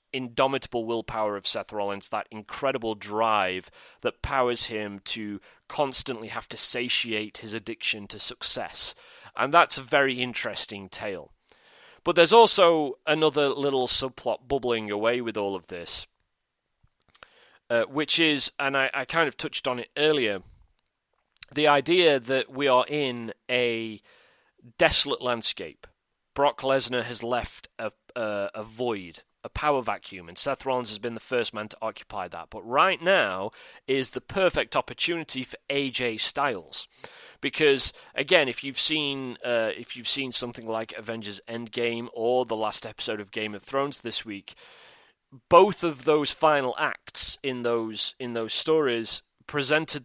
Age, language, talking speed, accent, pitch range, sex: 30-49, English, 150 wpm, British, 110-140 Hz, male